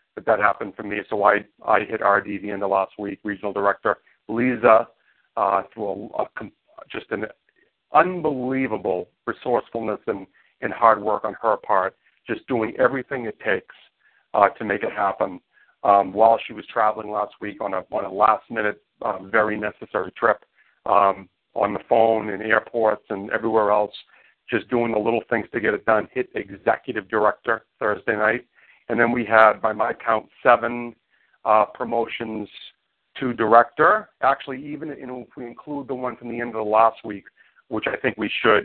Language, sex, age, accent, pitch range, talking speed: English, male, 50-69, American, 105-120 Hz, 175 wpm